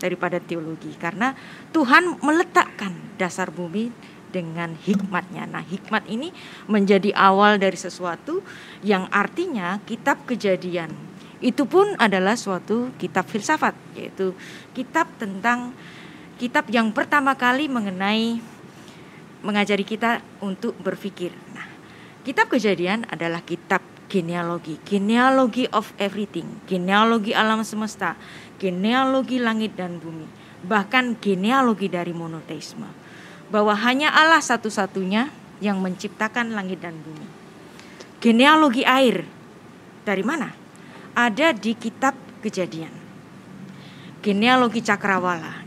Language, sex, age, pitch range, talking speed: Indonesian, female, 20-39, 185-240 Hz, 100 wpm